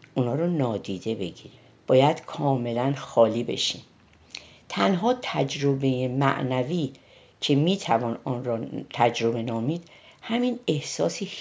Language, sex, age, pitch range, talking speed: Persian, female, 50-69, 130-185 Hz, 105 wpm